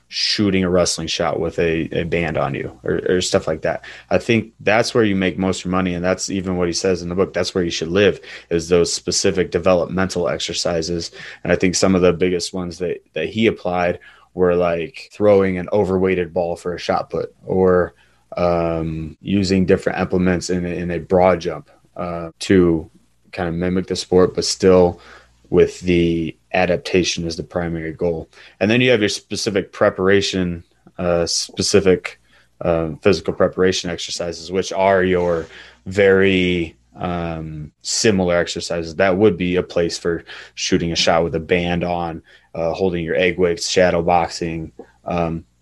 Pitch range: 85-95 Hz